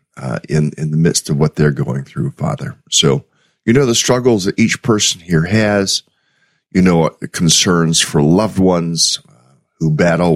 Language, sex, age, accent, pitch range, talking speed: English, male, 50-69, American, 80-105 Hz, 185 wpm